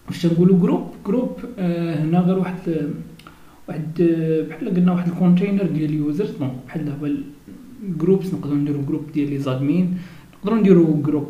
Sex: male